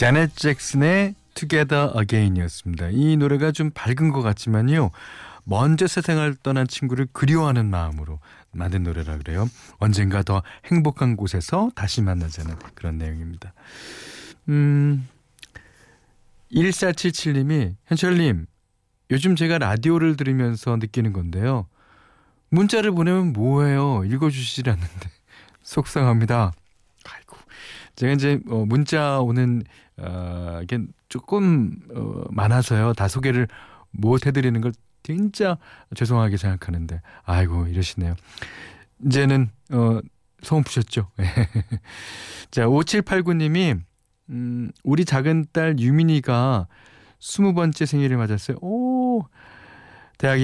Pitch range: 100-145 Hz